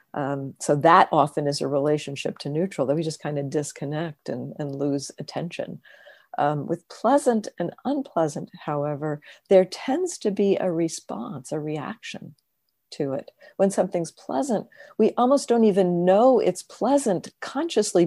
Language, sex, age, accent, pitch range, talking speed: English, female, 50-69, American, 155-210 Hz, 155 wpm